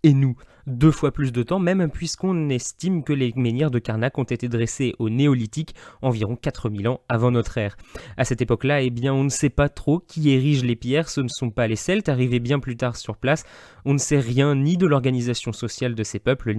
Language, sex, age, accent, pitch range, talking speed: French, male, 20-39, French, 120-160 Hz, 230 wpm